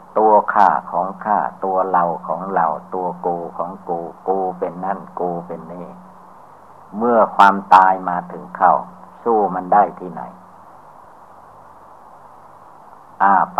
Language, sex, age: Thai, male, 60-79